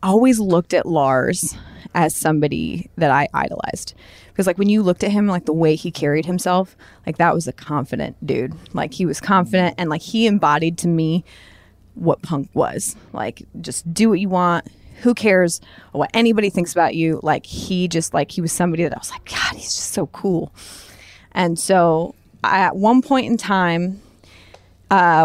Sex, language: female, English